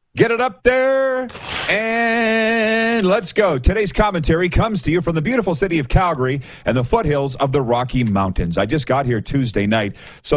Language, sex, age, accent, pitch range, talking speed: English, male, 40-59, American, 125-180 Hz, 185 wpm